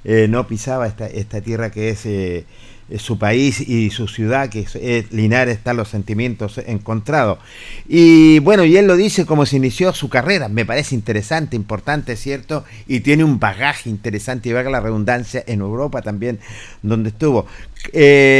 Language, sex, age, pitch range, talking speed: Spanish, male, 50-69, 110-145 Hz, 180 wpm